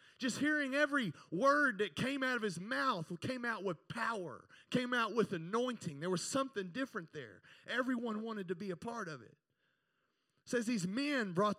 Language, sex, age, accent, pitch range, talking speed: English, male, 30-49, American, 170-235 Hz, 185 wpm